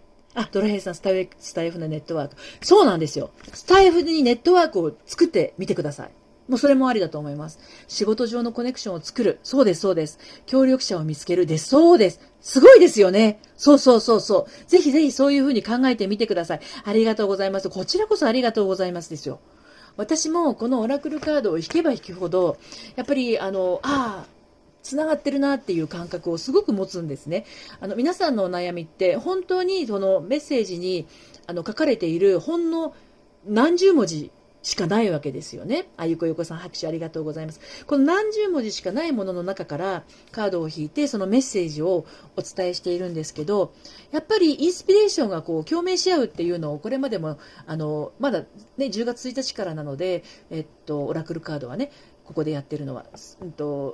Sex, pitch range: female, 170-280 Hz